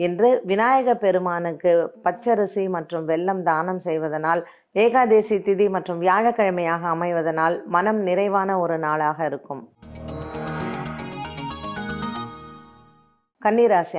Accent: native